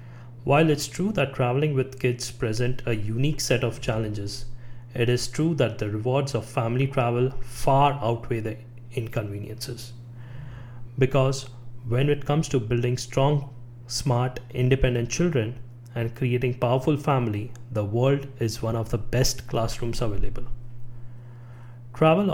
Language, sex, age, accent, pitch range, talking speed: English, male, 30-49, Indian, 120-135 Hz, 135 wpm